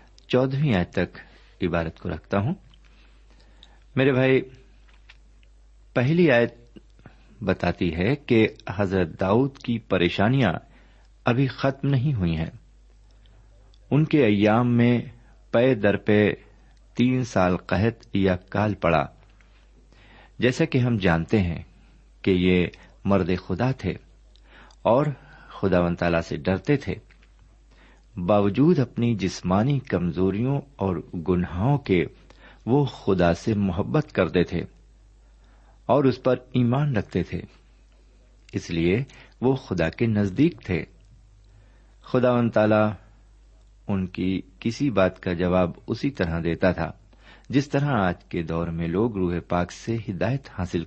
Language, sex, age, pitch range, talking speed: Urdu, male, 50-69, 90-125 Hz, 120 wpm